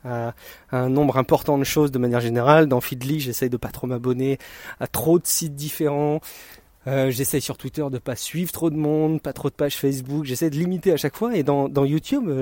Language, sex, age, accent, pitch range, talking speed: French, male, 30-49, French, 130-185 Hz, 220 wpm